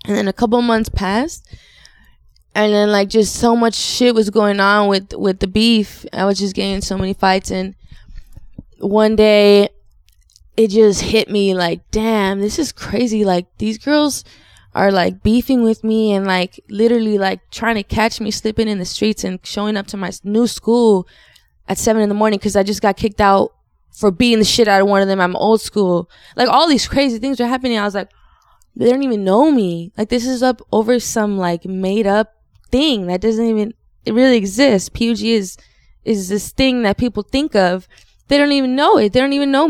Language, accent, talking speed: English, American, 210 wpm